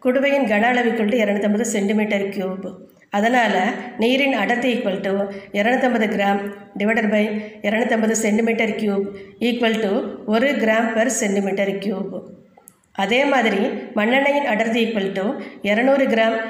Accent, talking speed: native, 85 wpm